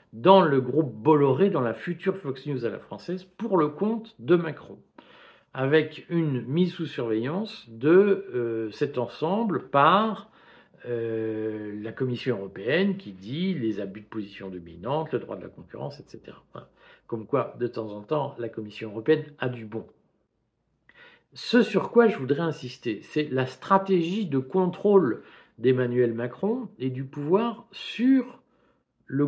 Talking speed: 155 wpm